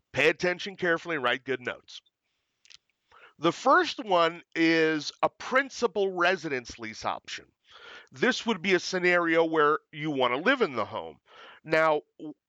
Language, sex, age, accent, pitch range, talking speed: English, male, 40-59, American, 135-175 Hz, 140 wpm